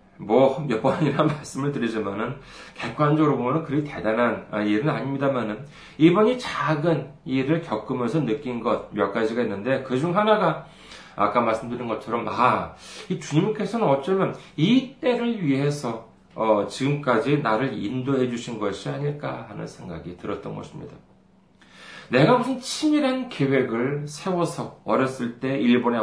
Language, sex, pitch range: Korean, male, 115-160 Hz